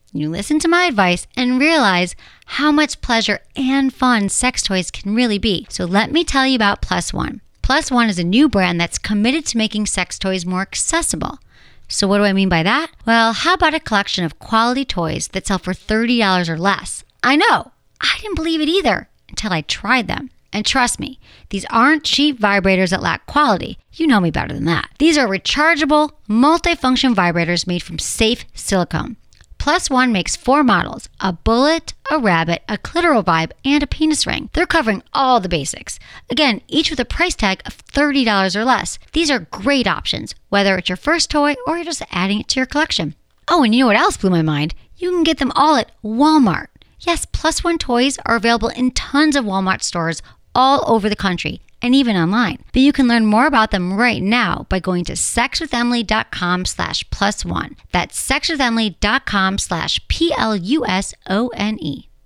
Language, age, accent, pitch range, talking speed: English, 40-59, American, 195-290 Hz, 190 wpm